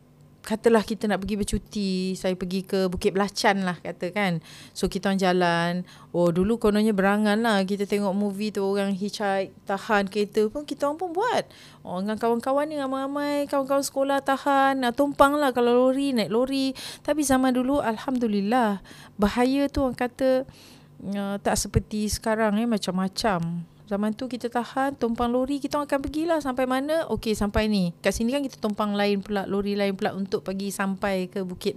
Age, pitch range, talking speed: 30-49, 190-245 Hz, 180 wpm